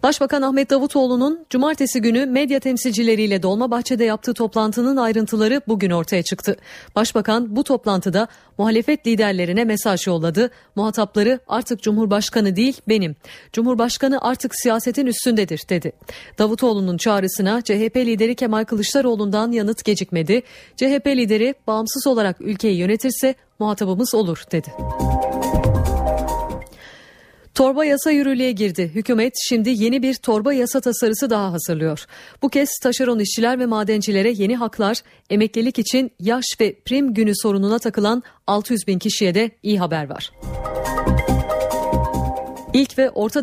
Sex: female